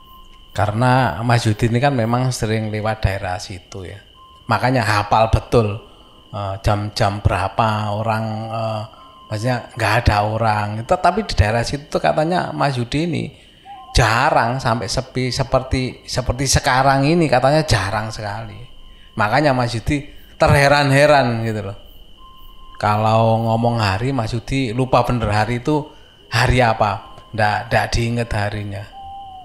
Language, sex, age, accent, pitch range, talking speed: Indonesian, male, 20-39, native, 105-125 Hz, 125 wpm